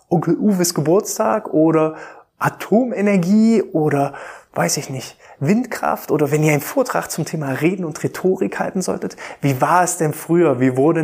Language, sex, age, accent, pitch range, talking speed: German, male, 20-39, German, 155-195 Hz, 160 wpm